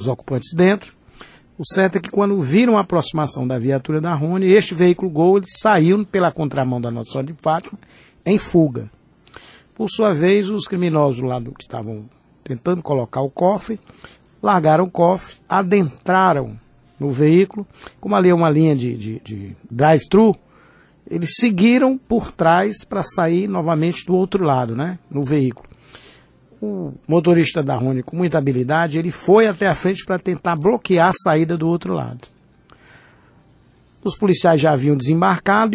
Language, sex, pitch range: Portuguese, male, 145-190 Hz